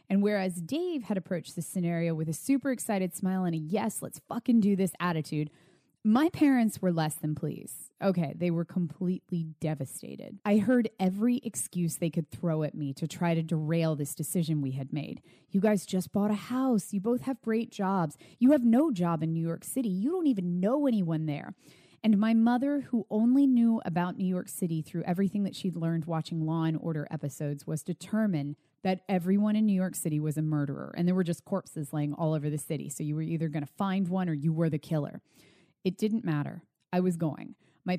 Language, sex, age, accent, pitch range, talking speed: English, female, 20-39, American, 160-205 Hz, 210 wpm